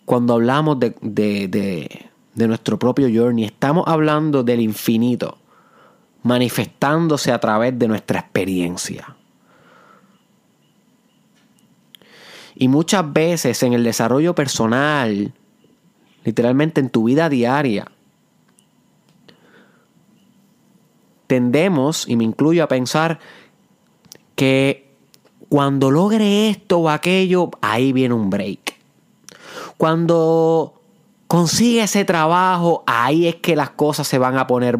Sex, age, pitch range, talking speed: male, 30-49, 125-175 Hz, 100 wpm